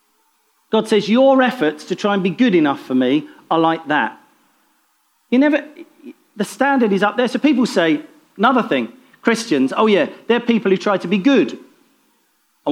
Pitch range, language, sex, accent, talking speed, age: 195-290 Hz, English, male, British, 180 wpm, 40-59